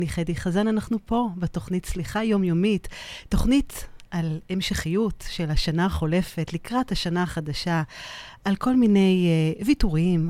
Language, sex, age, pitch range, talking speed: Hebrew, female, 30-49, 160-210 Hz, 120 wpm